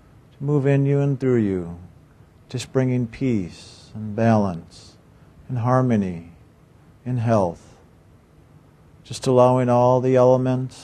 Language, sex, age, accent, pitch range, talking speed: English, male, 50-69, American, 105-125 Hz, 110 wpm